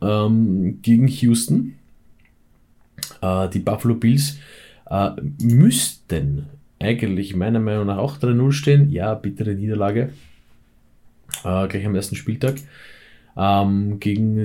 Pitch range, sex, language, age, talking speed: 95-110 Hz, male, German, 20-39, 85 wpm